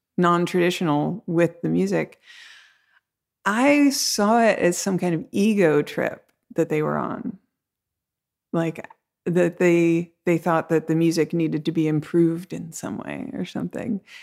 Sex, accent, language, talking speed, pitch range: female, American, English, 145 wpm, 155-190 Hz